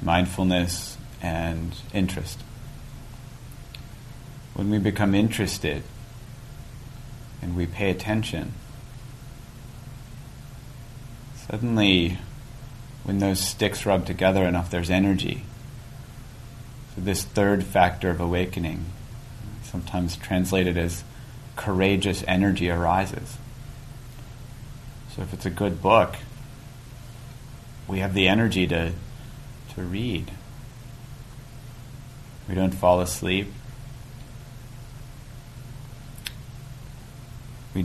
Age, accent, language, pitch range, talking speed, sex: 30-49, American, English, 95-130 Hz, 80 wpm, male